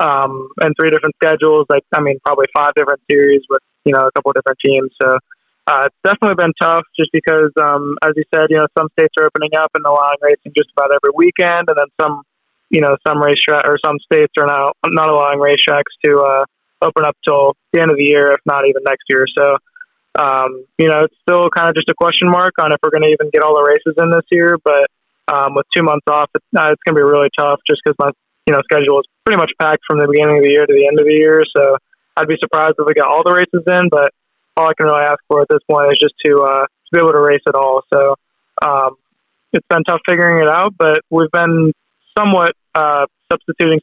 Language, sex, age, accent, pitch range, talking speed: English, male, 20-39, American, 145-160 Hz, 250 wpm